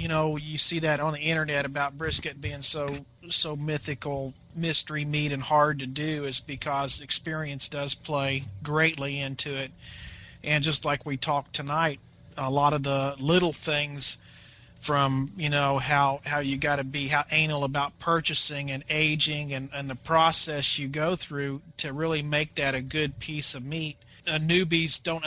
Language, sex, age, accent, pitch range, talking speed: English, male, 40-59, American, 140-160 Hz, 175 wpm